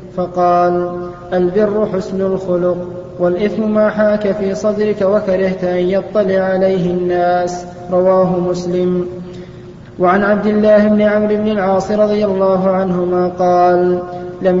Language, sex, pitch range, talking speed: Arabic, male, 180-210 Hz, 115 wpm